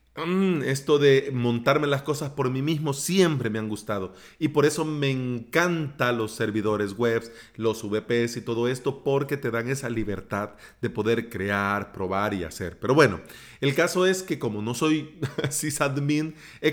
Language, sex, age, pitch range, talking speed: Spanish, male, 40-59, 120-160 Hz, 170 wpm